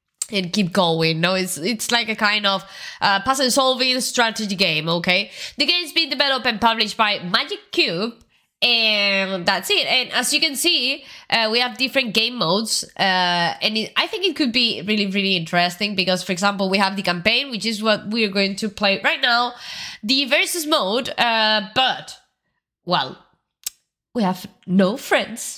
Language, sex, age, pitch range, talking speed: Italian, female, 20-39, 195-255 Hz, 175 wpm